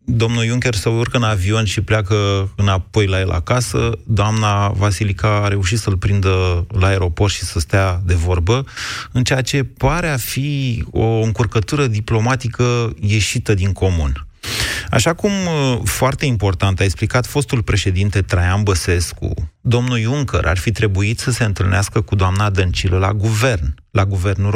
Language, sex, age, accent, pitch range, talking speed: Romanian, male, 30-49, native, 95-120 Hz, 150 wpm